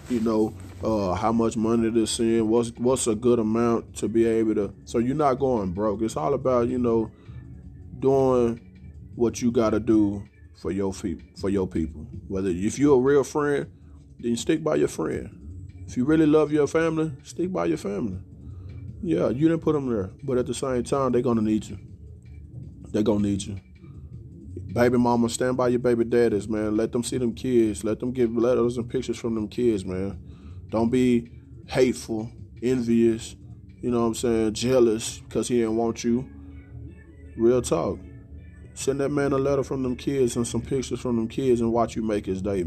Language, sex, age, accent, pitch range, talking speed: English, male, 20-39, American, 100-120 Hz, 200 wpm